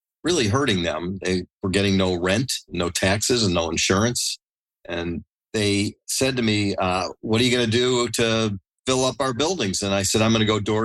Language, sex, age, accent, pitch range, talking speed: English, male, 40-59, American, 95-115 Hz, 210 wpm